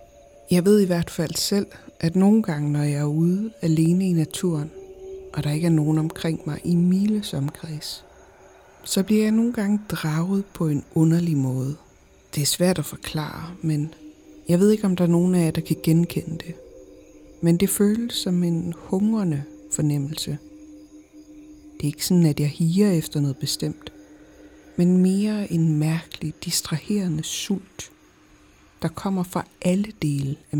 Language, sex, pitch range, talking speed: Danish, female, 150-200 Hz, 165 wpm